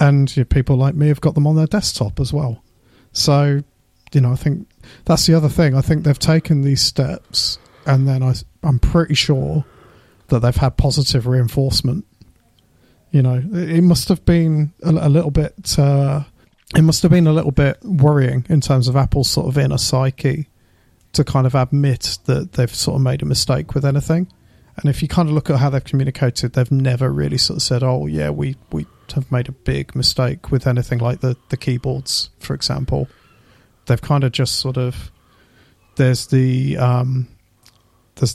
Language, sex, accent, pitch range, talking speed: English, male, British, 125-145 Hz, 185 wpm